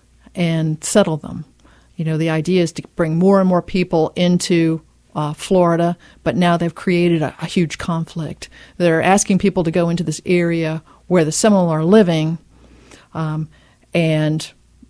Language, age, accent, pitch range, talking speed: English, 50-69, American, 160-180 Hz, 160 wpm